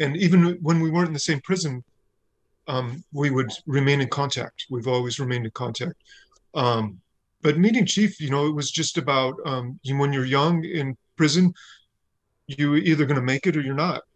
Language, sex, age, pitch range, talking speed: English, male, 40-59, 125-150 Hz, 185 wpm